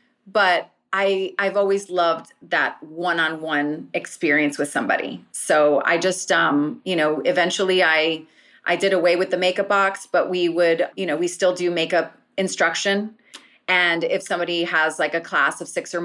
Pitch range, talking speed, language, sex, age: 165-195 Hz, 170 wpm, English, female, 30-49